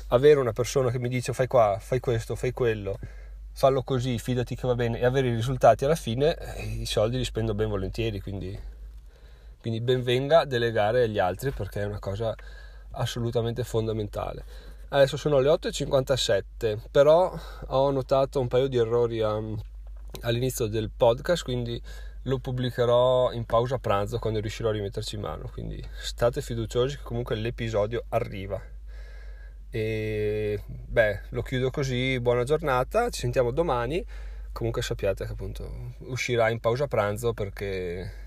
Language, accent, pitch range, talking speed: Italian, native, 100-130 Hz, 150 wpm